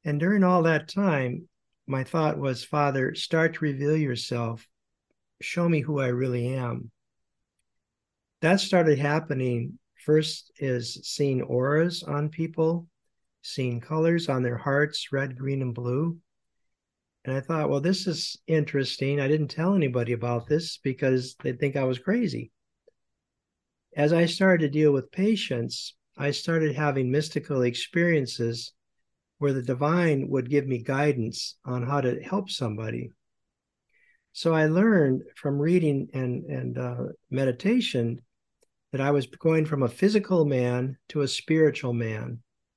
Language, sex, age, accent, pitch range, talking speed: English, male, 50-69, American, 125-160 Hz, 140 wpm